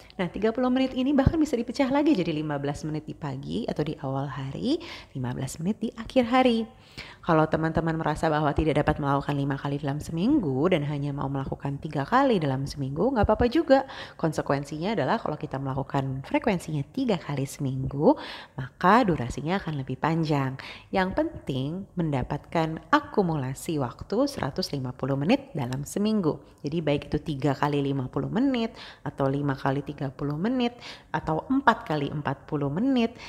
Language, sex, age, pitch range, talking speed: Indonesian, female, 30-49, 140-210 Hz, 155 wpm